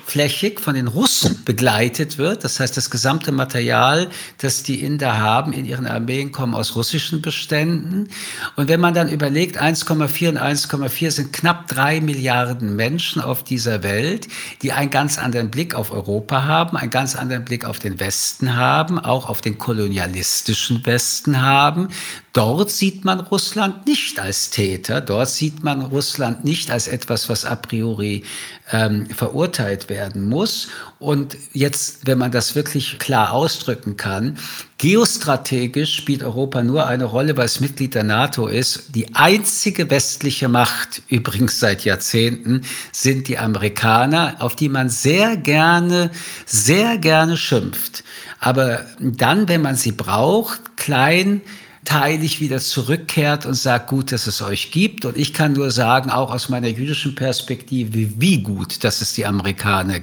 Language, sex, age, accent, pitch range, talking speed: German, male, 50-69, German, 120-155 Hz, 150 wpm